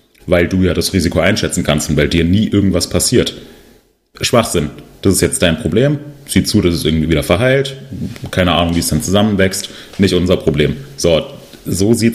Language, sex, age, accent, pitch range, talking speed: German, male, 30-49, German, 90-110 Hz, 190 wpm